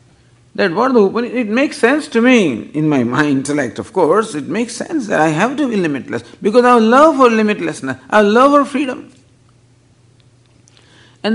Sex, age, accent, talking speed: male, 50-69, Indian, 175 wpm